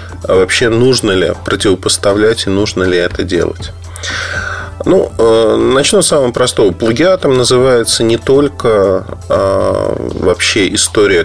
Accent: native